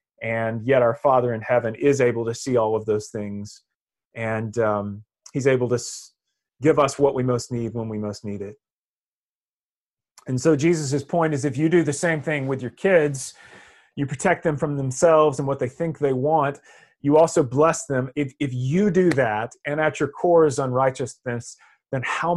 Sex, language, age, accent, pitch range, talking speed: male, English, 30-49, American, 125-165 Hz, 195 wpm